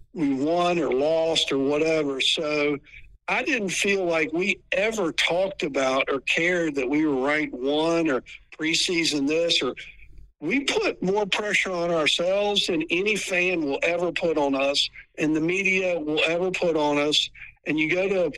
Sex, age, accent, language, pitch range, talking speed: male, 60-79, American, English, 155-190 Hz, 170 wpm